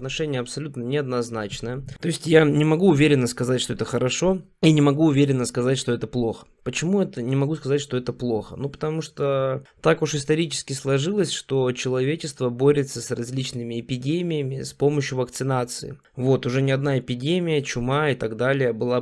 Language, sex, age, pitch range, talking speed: Russian, male, 20-39, 120-150 Hz, 175 wpm